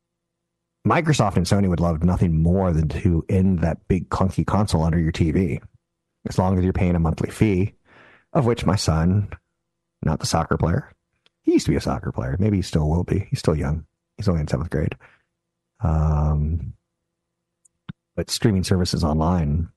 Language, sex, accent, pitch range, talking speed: English, male, American, 85-110 Hz, 175 wpm